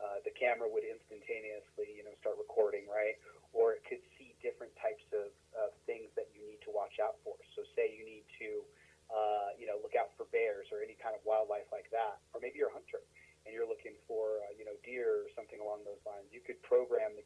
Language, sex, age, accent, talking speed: English, male, 30-49, American, 235 wpm